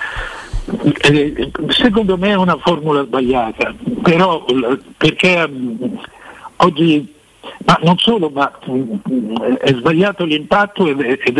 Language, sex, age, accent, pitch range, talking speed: Italian, male, 60-79, native, 130-190 Hz, 90 wpm